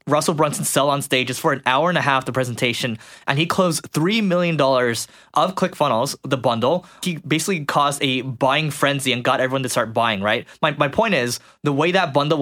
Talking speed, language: 210 wpm, English